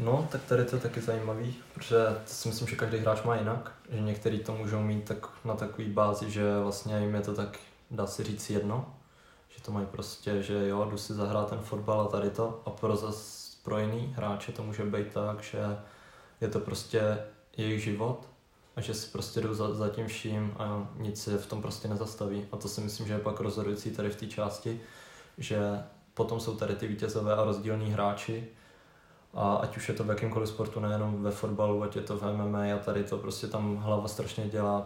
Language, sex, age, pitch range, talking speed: Czech, male, 20-39, 105-115 Hz, 215 wpm